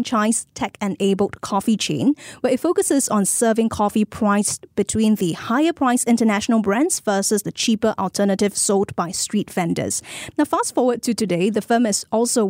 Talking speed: 170 wpm